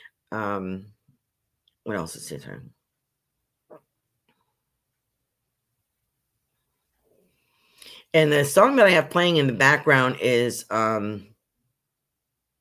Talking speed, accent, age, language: 85 wpm, American, 50-69, English